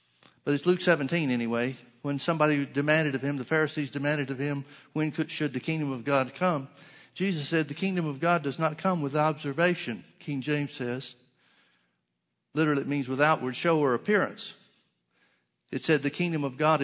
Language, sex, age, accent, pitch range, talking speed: English, male, 50-69, American, 130-165 Hz, 180 wpm